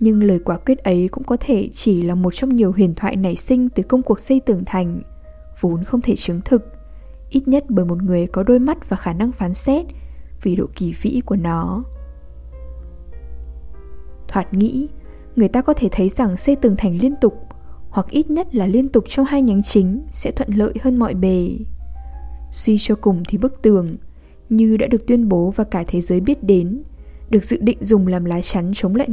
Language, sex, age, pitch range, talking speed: English, female, 10-29, 180-245 Hz, 210 wpm